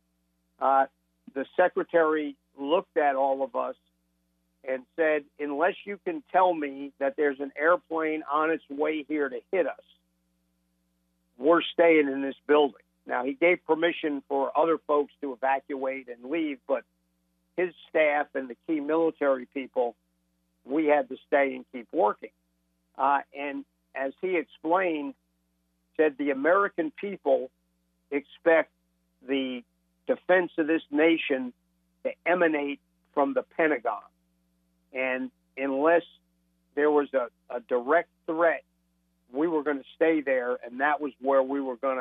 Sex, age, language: male, 50-69, English